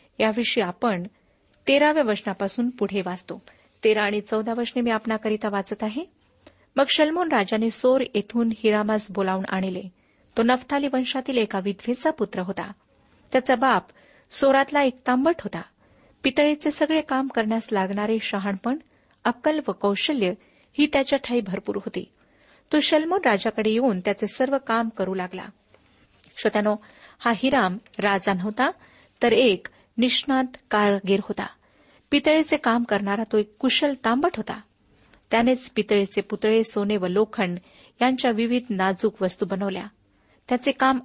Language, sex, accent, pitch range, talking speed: Marathi, female, native, 200-260 Hz, 130 wpm